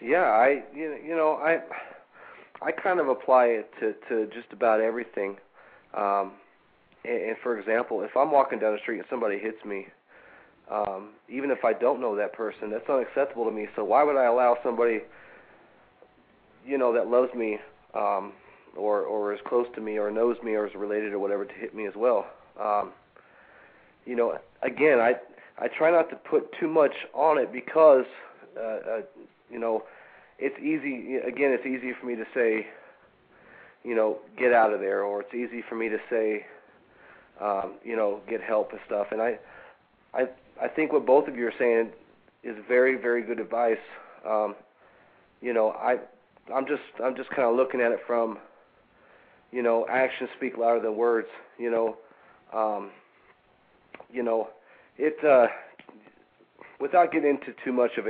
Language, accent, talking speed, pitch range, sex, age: English, American, 175 wpm, 110-130 Hz, male, 40-59